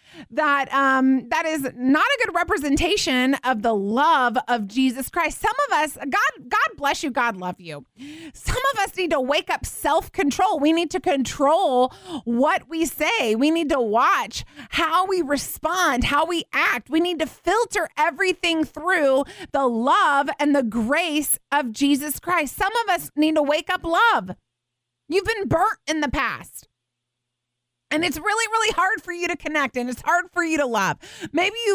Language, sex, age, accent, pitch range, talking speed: English, female, 30-49, American, 235-335 Hz, 180 wpm